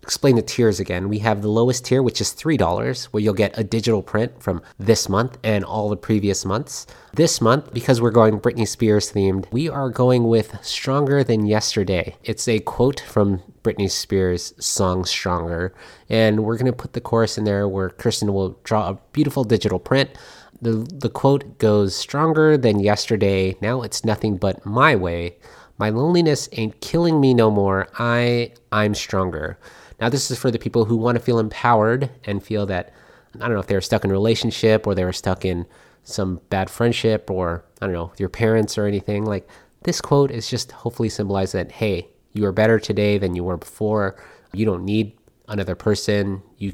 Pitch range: 95-115 Hz